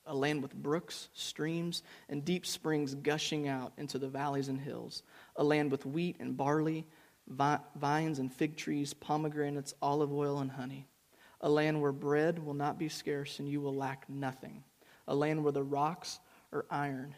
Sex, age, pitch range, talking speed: male, 30-49, 135-155 Hz, 175 wpm